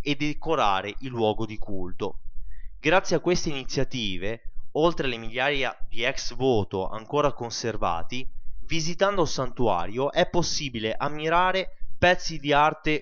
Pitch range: 115-150 Hz